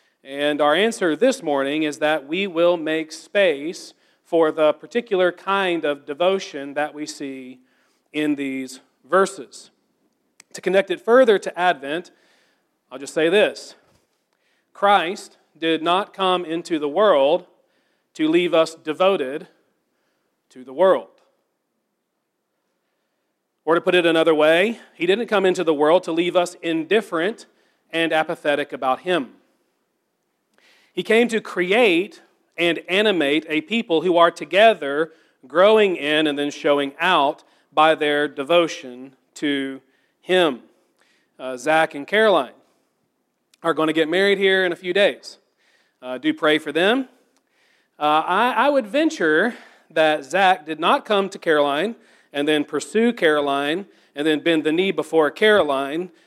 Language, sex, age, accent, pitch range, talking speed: English, male, 40-59, American, 150-195 Hz, 140 wpm